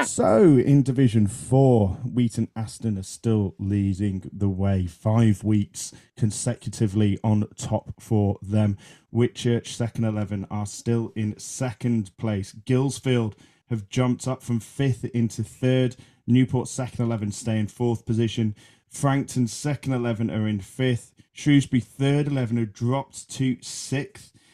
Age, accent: 30-49, British